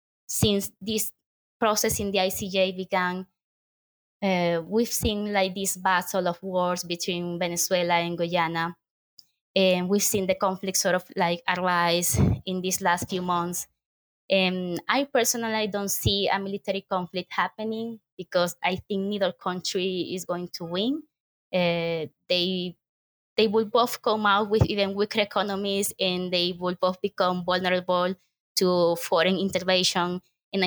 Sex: female